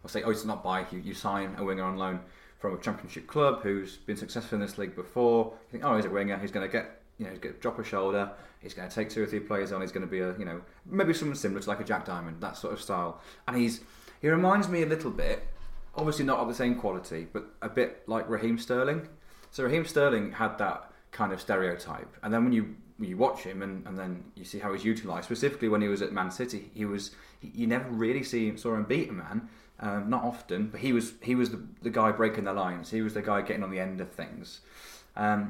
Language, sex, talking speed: English, male, 265 wpm